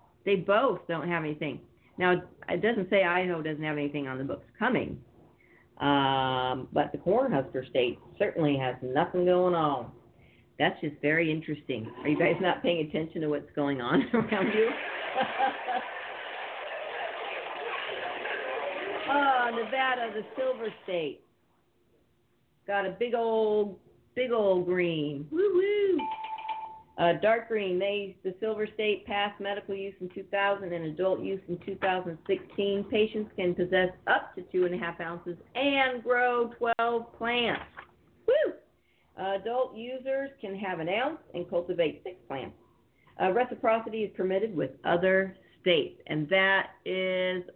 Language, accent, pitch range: English, American, 165-220 Hz